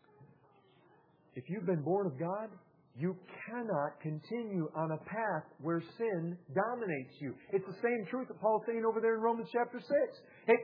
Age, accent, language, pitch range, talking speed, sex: 50-69, American, English, 145-205 Hz, 170 wpm, male